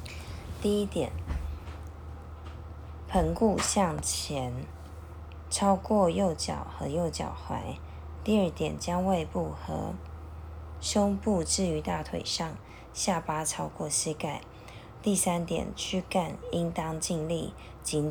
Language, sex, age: Chinese, female, 20-39